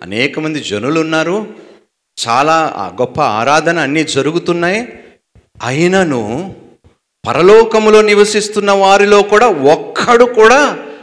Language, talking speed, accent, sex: Telugu, 90 wpm, native, male